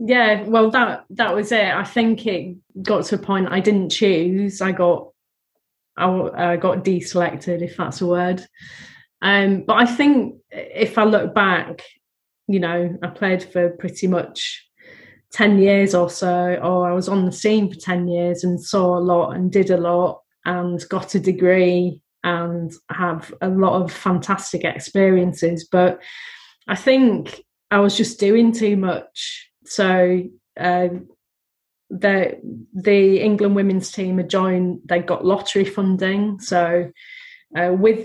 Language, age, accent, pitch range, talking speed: English, 30-49, British, 180-200 Hz, 155 wpm